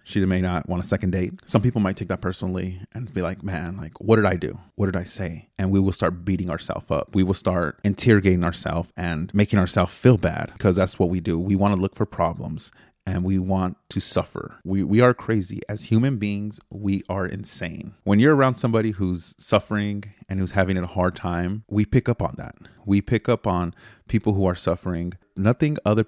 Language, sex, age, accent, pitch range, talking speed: English, male, 30-49, American, 85-105 Hz, 220 wpm